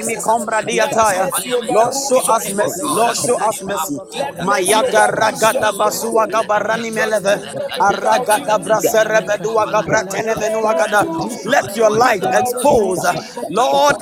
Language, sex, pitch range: English, male, 220-280 Hz